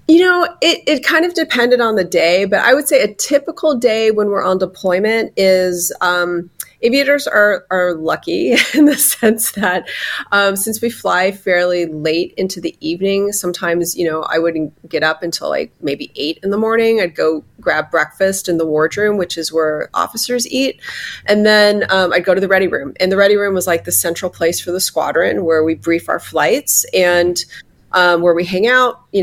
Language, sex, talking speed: English, female, 205 wpm